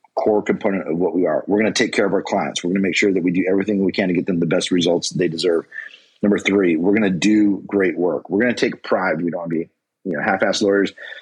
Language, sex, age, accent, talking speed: English, male, 40-59, American, 295 wpm